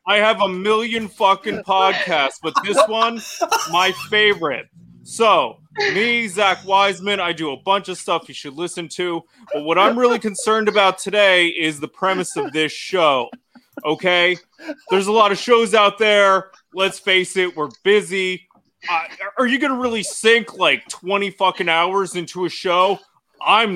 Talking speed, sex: 165 wpm, male